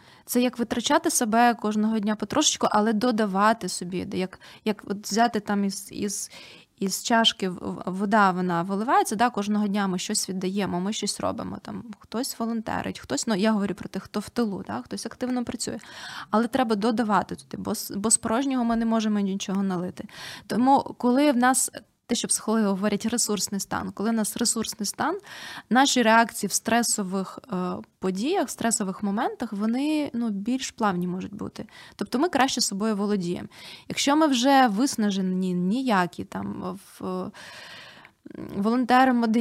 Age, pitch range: 20-39, 200-235 Hz